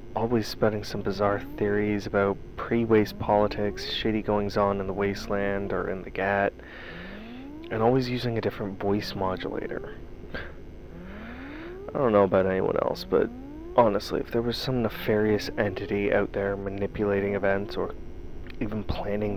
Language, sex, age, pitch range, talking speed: English, male, 30-49, 95-110 Hz, 145 wpm